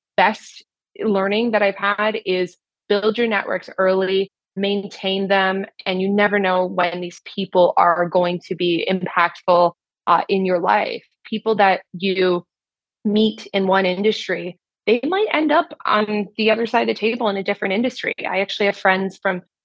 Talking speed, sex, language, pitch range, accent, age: 170 wpm, female, English, 180-205 Hz, American, 20-39